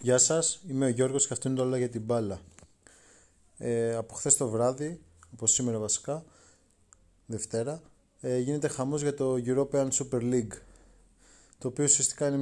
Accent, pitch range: native, 110-140 Hz